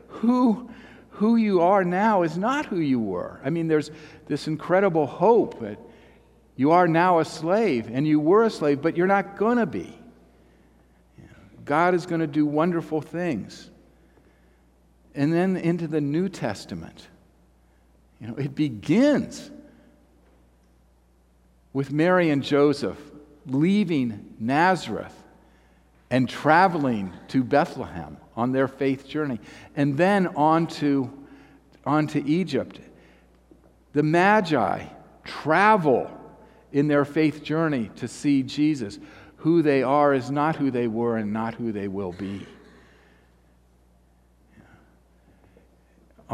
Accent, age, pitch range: American, 50-69, 105-165 Hz